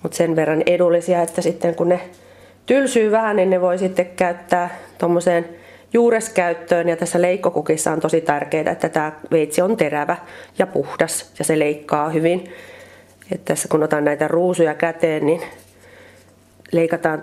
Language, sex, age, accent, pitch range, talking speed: Finnish, female, 30-49, native, 160-210 Hz, 150 wpm